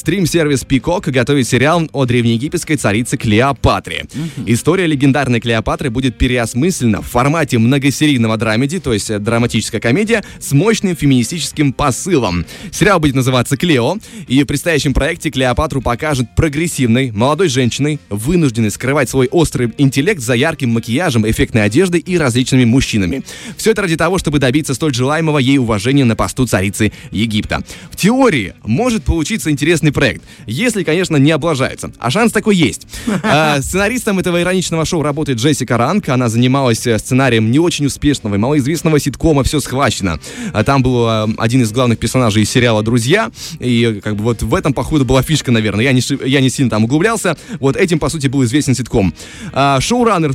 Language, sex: Russian, male